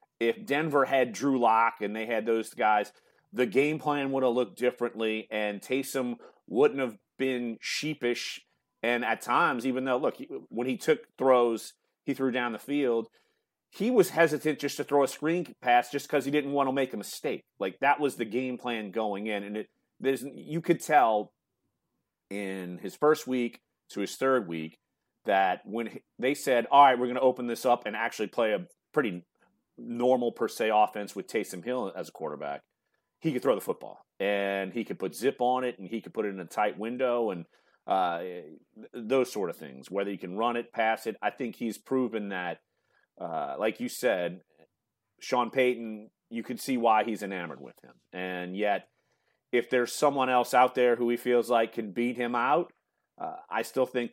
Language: English